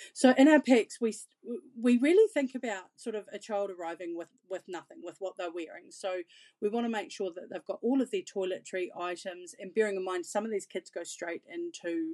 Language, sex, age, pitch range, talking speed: English, female, 40-59, 185-250 Hz, 225 wpm